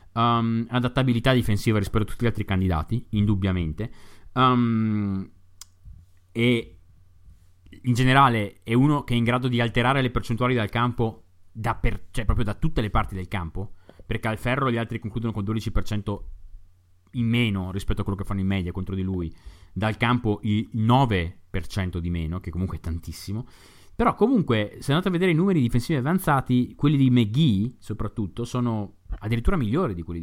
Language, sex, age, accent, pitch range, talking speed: Italian, male, 30-49, native, 95-125 Hz, 160 wpm